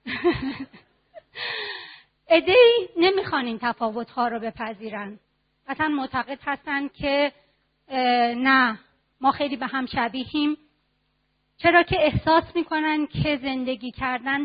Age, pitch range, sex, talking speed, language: 40-59, 245-315 Hz, female, 95 wpm, Persian